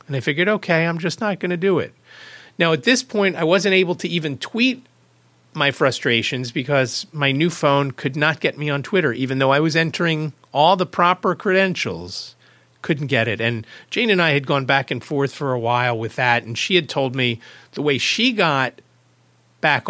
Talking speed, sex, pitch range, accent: 210 wpm, male, 115-165 Hz, American